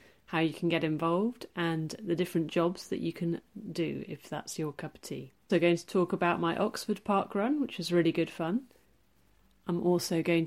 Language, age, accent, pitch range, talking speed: English, 30-49, British, 165-185 Hz, 210 wpm